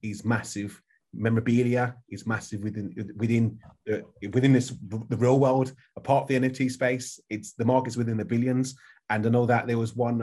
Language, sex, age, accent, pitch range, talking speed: English, male, 30-49, British, 110-125 Hz, 180 wpm